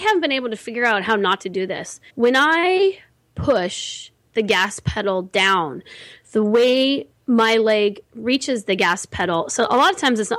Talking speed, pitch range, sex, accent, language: 185 wpm, 205-250 Hz, female, American, English